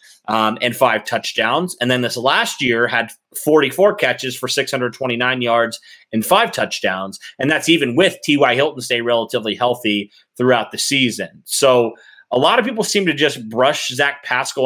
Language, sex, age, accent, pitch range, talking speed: English, male, 30-49, American, 110-135 Hz, 170 wpm